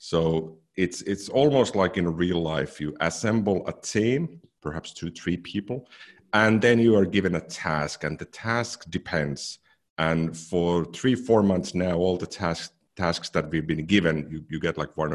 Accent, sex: Finnish, male